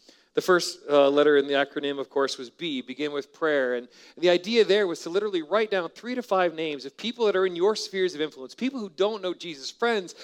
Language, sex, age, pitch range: English, male, 40-59, 140-195 Hz